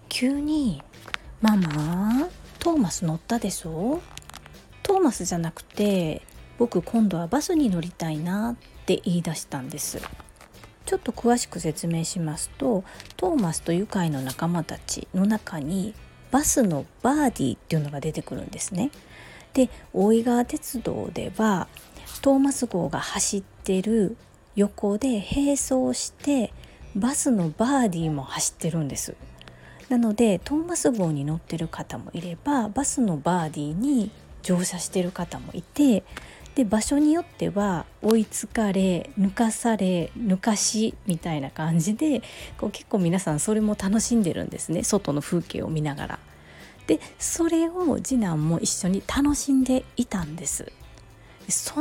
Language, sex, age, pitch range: Japanese, female, 40-59, 165-250 Hz